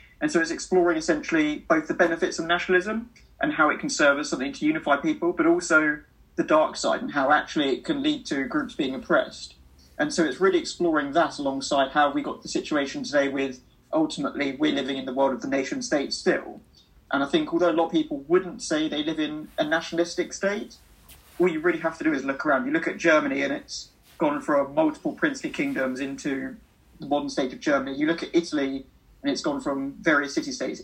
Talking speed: 220 wpm